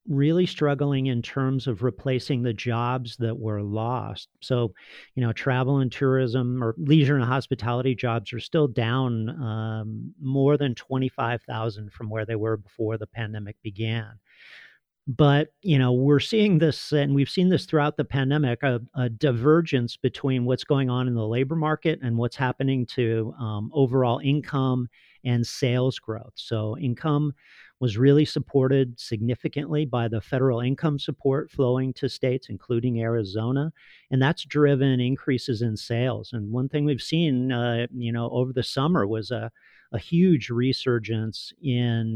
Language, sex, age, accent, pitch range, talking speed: English, male, 40-59, American, 115-140 Hz, 155 wpm